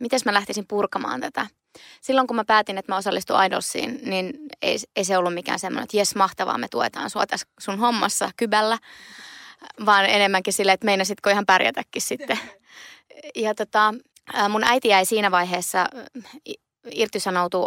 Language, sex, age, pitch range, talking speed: Finnish, female, 20-39, 190-240 Hz, 155 wpm